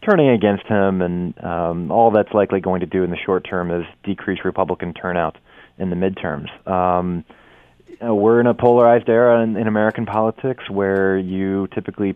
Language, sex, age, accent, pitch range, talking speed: English, male, 20-39, American, 90-105 Hz, 185 wpm